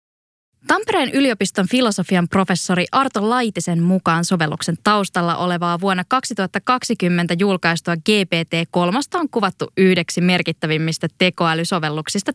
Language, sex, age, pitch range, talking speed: English, female, 20-39, 170-235 Hz, 95 wpm